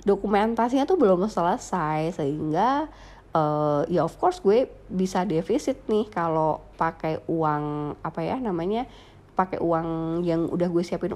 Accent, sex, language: native, female, Indonesian